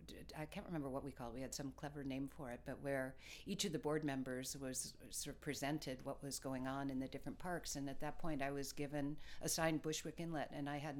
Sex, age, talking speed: female, 50-69, 245 wpm